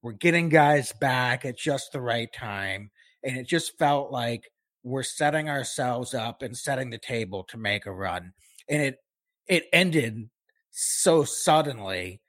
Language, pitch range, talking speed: English, 115-155 Hz, 155 wpm